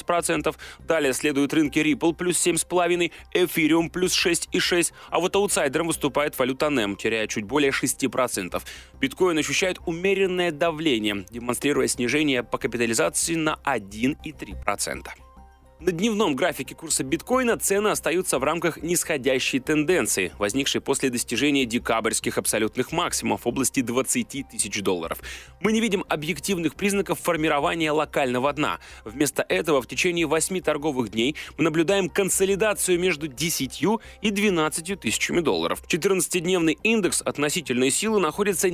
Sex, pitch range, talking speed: male, 130-180 Hz, 125 wpm